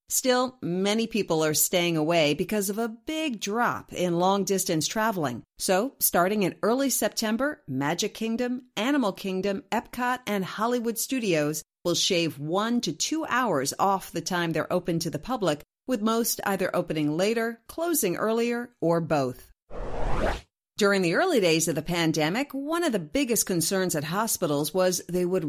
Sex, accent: female, American